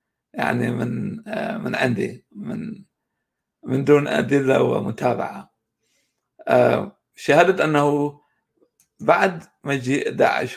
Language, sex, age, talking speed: Arabic, male, 60-79, 80 wpm